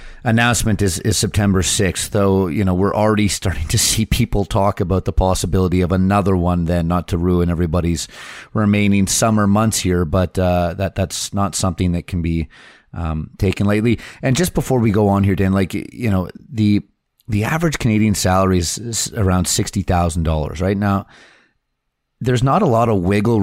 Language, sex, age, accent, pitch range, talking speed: English, male, 30-49, American, 90-105 Hz, 180 wpm